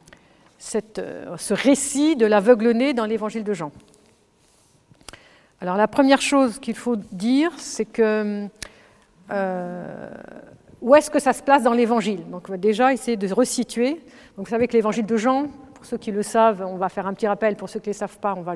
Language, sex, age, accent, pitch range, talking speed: French, female, 50-69, French, 200-260 Hz, 205 wpm